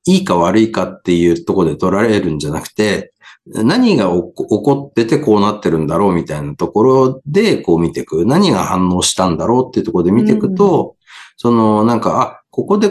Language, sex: Japanese, male